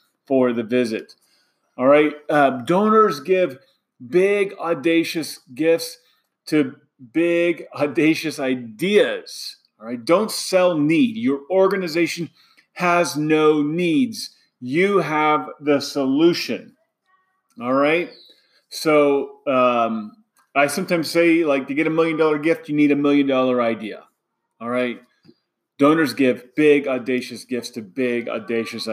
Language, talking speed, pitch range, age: English, 120 wpm, 130-195 Hz, 30-49